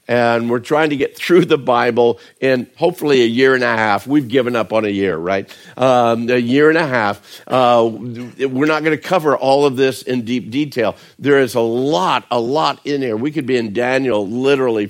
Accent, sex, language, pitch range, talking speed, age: American, male, English, 110-125 Hz, 220 wpm, 50-69